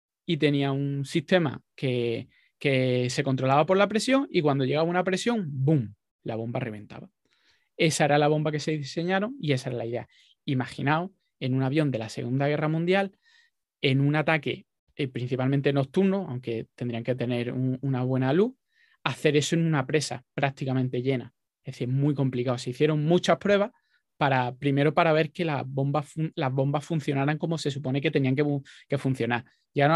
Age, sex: 20-39, male